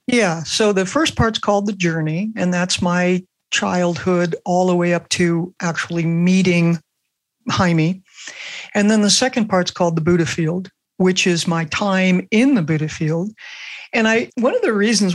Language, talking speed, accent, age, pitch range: English, 170 wpm, American, 60-79, 170-205 Hz